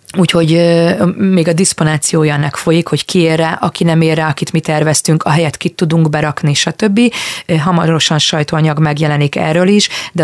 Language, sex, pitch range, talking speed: Hungarian, female, 150-175 Hz, 160 wpm